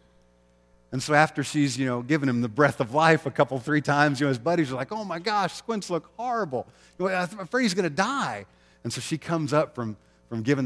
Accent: American